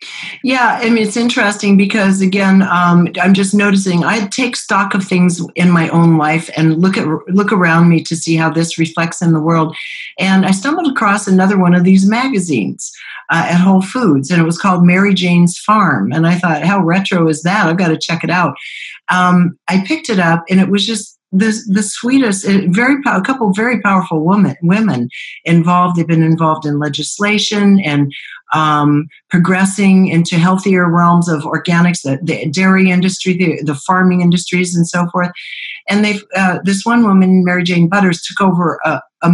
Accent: American